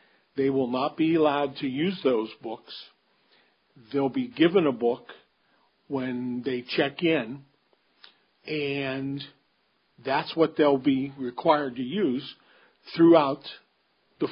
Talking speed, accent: 115 wpm, American